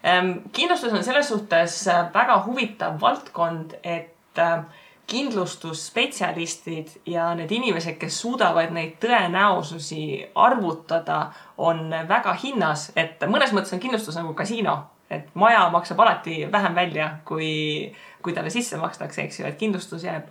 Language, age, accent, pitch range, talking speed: English, 20-39, Finnish, 165-200 Hz, 120 wpm